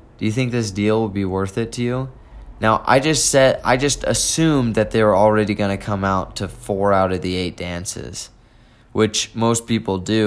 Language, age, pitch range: English, 20-39, 95-120 Hz